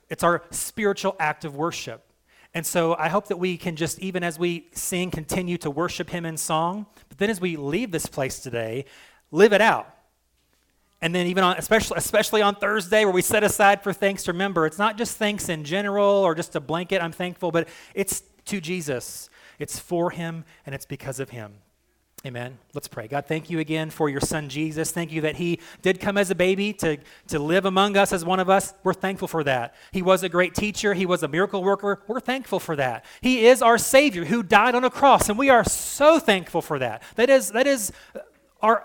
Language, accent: English, American